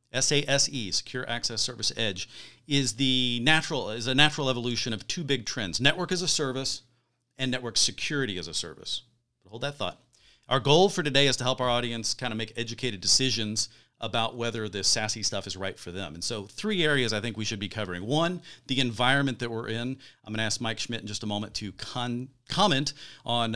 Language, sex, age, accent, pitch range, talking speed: English, male, 40-59, American, 105-130 Hz, 210 wpm